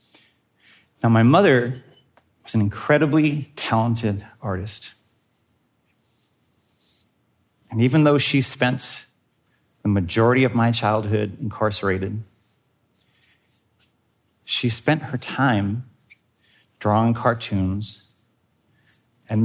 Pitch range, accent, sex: 110-135 Hz, American, male